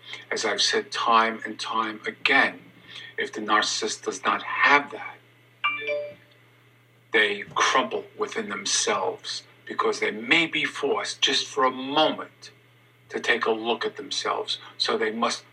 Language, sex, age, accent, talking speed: English, male, 50-69, American, 140 wpm